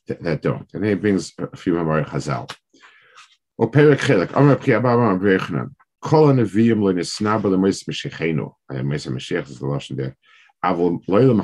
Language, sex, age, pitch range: English, male, 50-69, 80-120 Hz